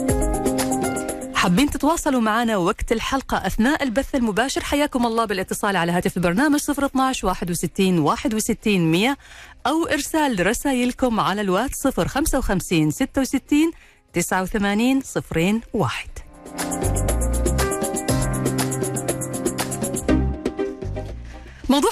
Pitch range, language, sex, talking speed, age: 165-265 Hz, Arabic, female, 60 wpm, 40-59